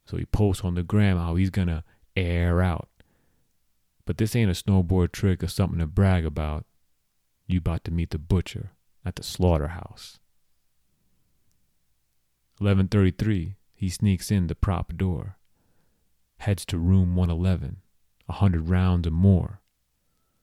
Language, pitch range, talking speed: English, 85-100 Hz, 140 wpm